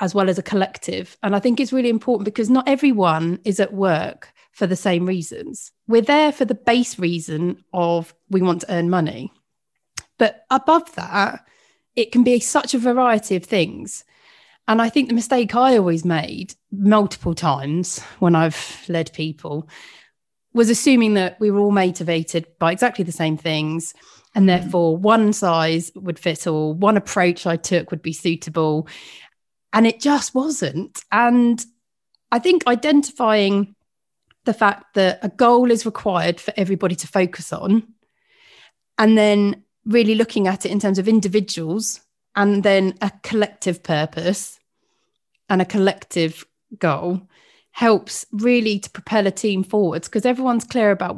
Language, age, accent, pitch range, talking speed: English, 30-49, British, 175-230 Hz, 155 wpm